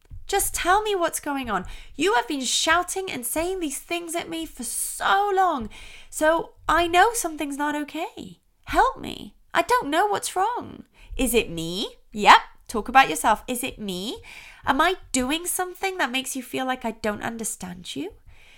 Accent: British